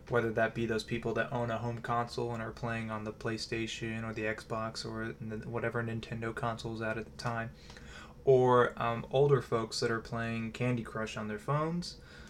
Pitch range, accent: 110-120 Hz, American